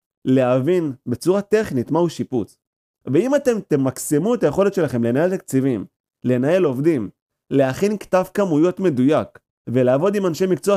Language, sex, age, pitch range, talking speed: Hebrew, male, 30-49, 125-180 Hz, 130 wpm